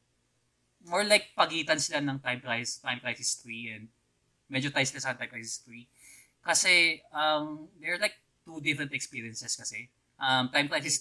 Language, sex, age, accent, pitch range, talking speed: Filipino, male, 20-39, native, 120-140 Hz, 160 wpm